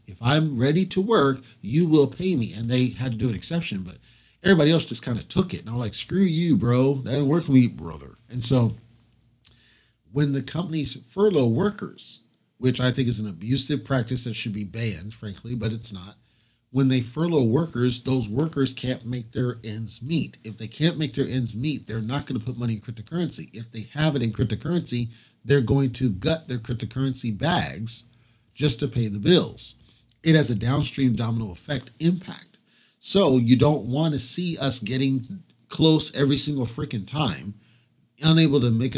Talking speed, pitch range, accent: 190 wpm, 115-145 Hz, American